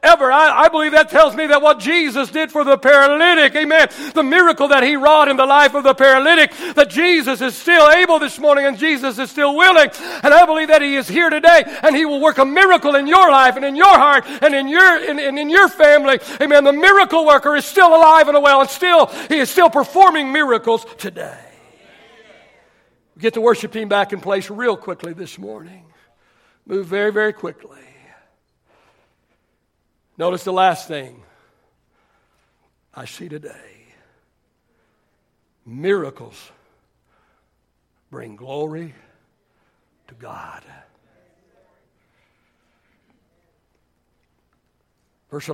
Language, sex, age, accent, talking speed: English, male, 60-79, American, 150 wpm